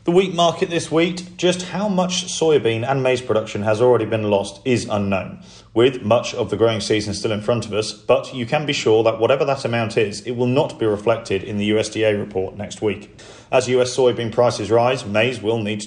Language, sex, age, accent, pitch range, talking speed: English, male, 40-59, British, 105-125 Hz, 220 wpm